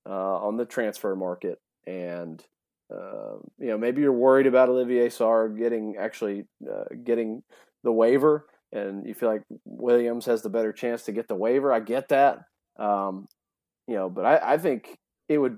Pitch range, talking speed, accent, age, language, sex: 105-125 Hz, 175 wpm, American, 30-49, English, male